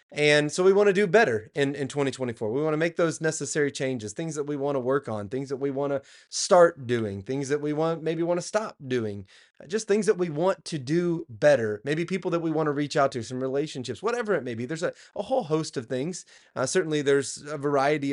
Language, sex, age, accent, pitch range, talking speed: English, male, 30-49, American, 125-170 Hz, 250 wpm